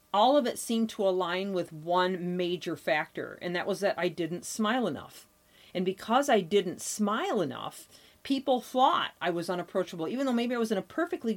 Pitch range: 170-225 Hz